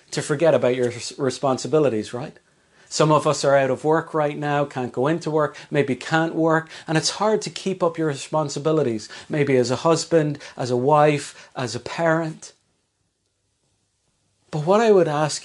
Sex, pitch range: male, 130-180 Hz